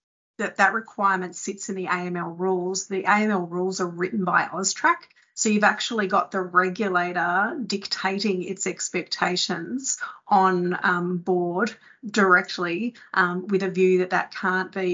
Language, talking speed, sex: English, 145 wpm, female